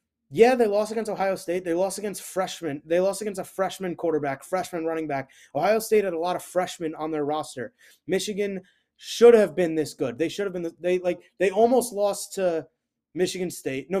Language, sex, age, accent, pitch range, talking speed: English, male, 20-39, American, 155-200 Hz, 210 wpm